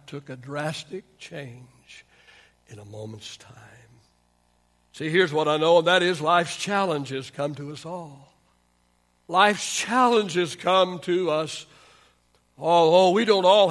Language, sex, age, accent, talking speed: English, male, 60-79, American, 135 wpm